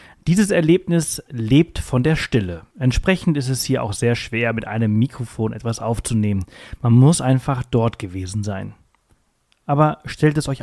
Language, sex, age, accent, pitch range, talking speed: German, male, 30-49, German, 110-140 Hz, 160 wpm